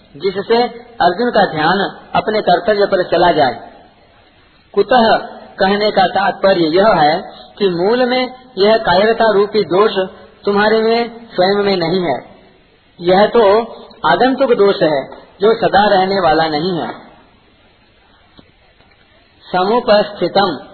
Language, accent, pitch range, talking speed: Hindi, native, 175-220 Hz, 115 wpm